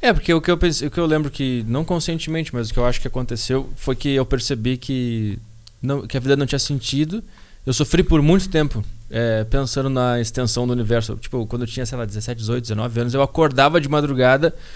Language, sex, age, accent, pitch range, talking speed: Portuguese, male, 20-39, Brazilian, 125-165 Hz, 230 wpm